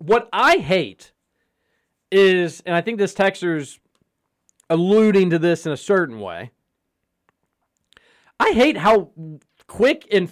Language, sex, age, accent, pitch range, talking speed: English, male, 40-59, American, 145-195 Hz, 120 wpm